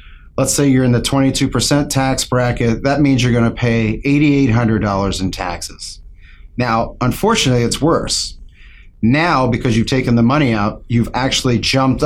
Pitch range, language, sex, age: 95-135 Hz, English, male, 40-59